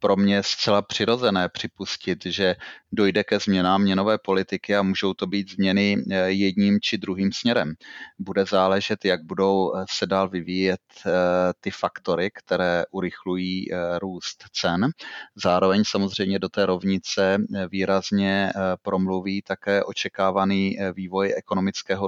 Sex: male